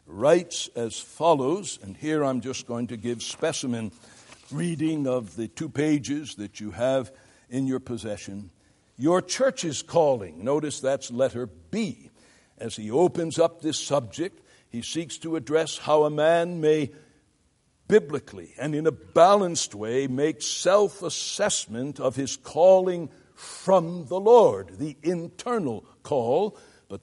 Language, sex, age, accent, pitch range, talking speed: English, male, 60-79, American, 115-165 Hz, 135 wpm